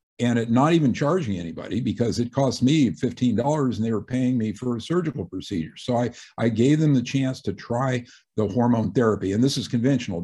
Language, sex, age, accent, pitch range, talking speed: English, male, 50-69, American, 100-130 Hz, 215 wpm